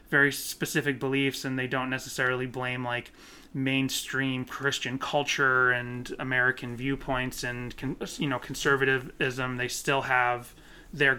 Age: 30-49